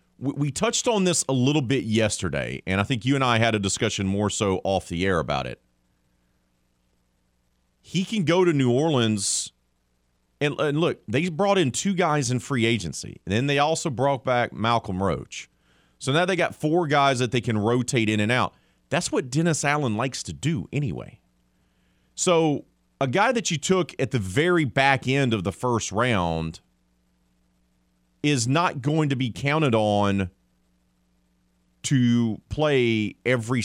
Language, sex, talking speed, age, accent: English, male, 170 wpm, 30-49, American